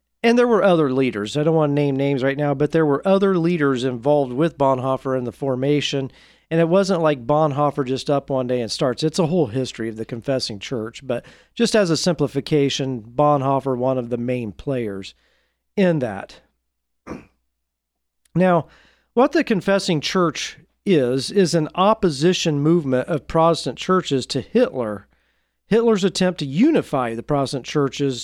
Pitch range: 125-170 Hz